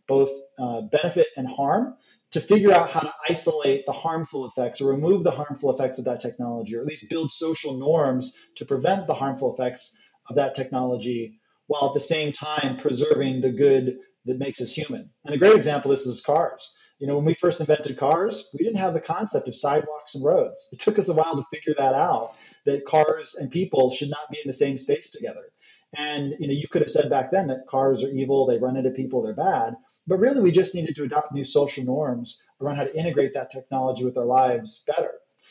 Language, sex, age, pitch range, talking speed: English, male, 30-49, 130-165 Hz, 220 wpm